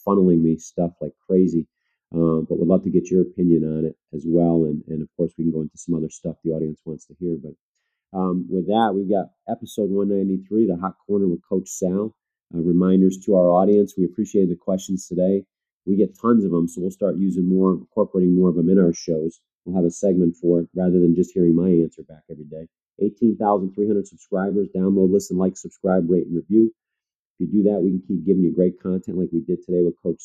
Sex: male